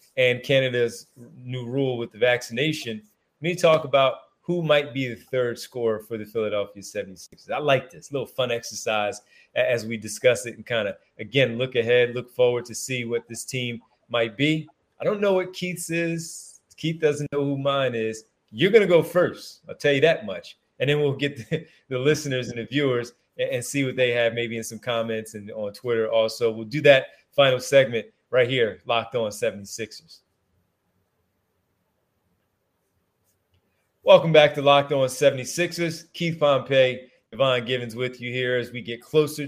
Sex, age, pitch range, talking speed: male, 30-49, 115-150 Hz, 180 wpm